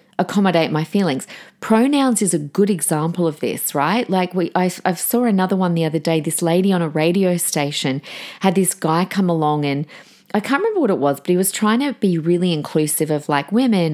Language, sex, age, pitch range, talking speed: English, female, 30-49, 160-215 Hz, 215 wpm